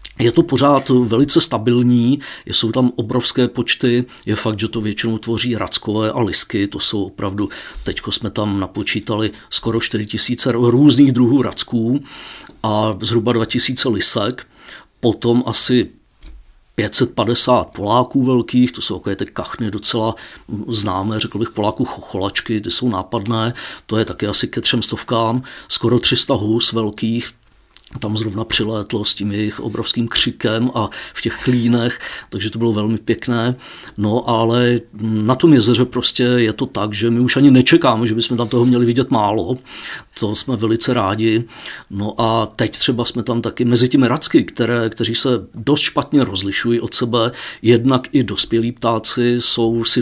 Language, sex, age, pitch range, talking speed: Czech, male, 50-69, 110-125 Hz, 155 wpm